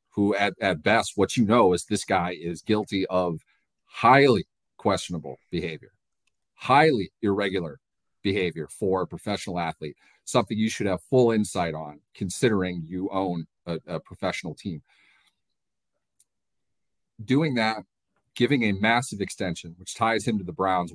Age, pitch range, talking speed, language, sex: 40-59, 90-105 Hz, 140 wpm, English, male